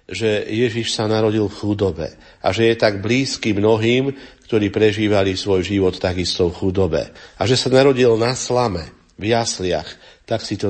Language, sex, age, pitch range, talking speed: Slovak, male, 50-69, 95-115 Hz, 170 wpm